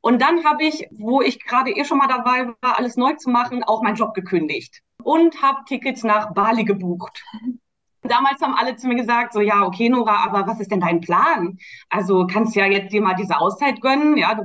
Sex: female